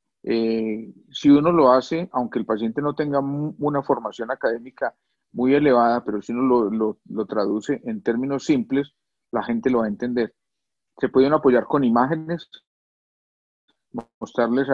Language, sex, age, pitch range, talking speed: Spanish, male, 40-59, 115-145 Hz, 155 wpm